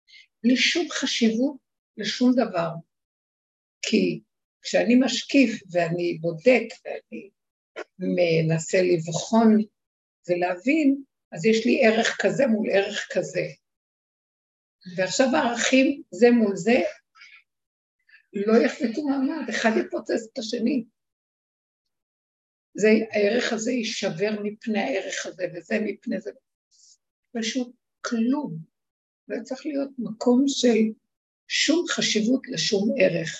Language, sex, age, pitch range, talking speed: Hebrew, female, 60-79, 195-260 Hz, 100 wpm